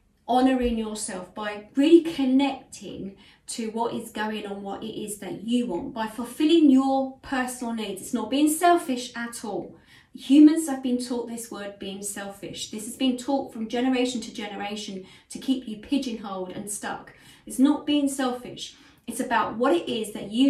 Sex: female